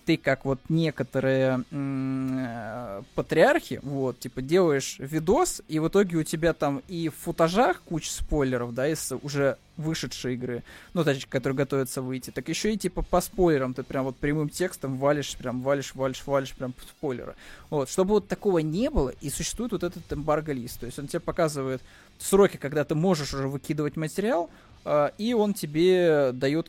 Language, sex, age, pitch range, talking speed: Russian, male, 20-39, 130-160 Hz, 175 wpm